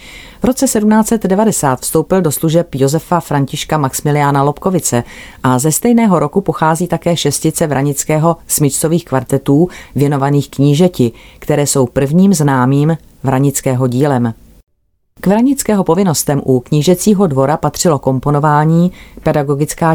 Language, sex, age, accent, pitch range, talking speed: Czech, female, 40-59, native, 140-175 Hz, 110 wpm